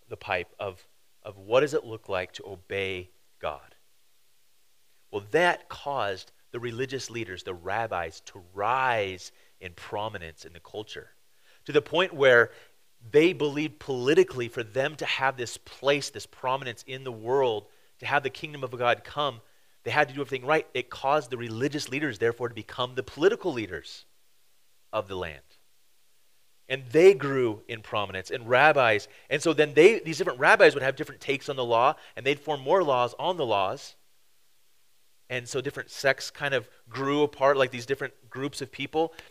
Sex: male